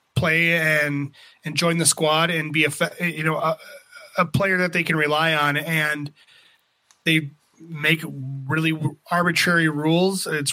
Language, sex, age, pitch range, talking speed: English, male, 30-49, 150-175 Hz, 150 wpm